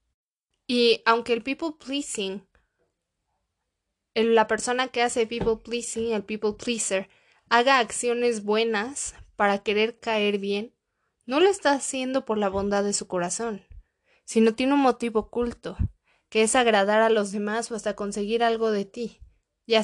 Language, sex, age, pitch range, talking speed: Spanish, female, 20-39, 200-240 Hz, 150 wpm